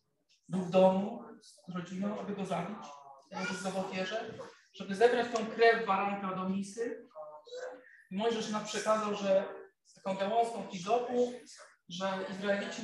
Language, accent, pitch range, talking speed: Polish, native, 195-235 Hz, 115 wpm